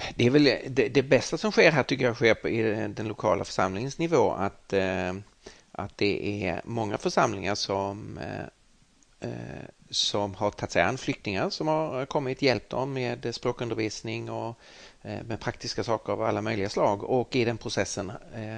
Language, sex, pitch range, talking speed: Swedish, male, 105-135 Hz, 165 wpm